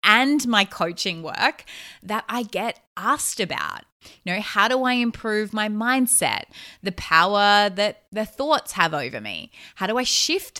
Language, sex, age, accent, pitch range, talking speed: English, female, 20-39, Australian, 165-210 Hz, 165 wpm